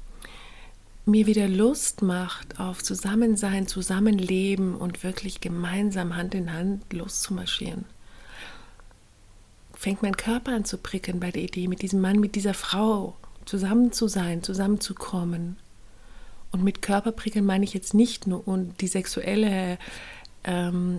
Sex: female